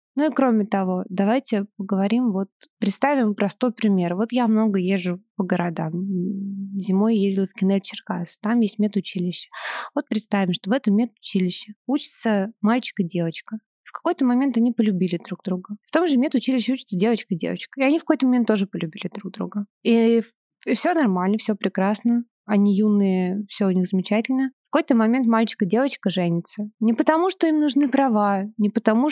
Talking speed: 175 wpm